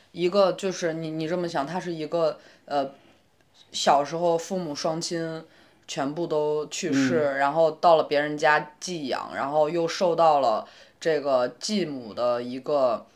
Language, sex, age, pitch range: Chinese, female, 20-39, 145-180 Hz